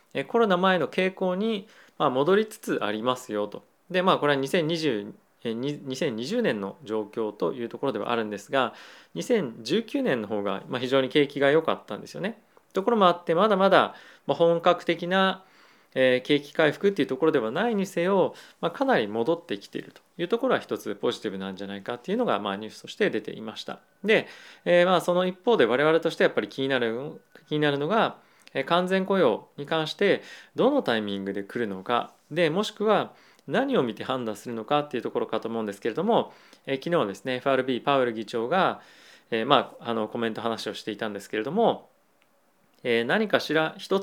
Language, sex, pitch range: Japanese, male, 115-180 Hz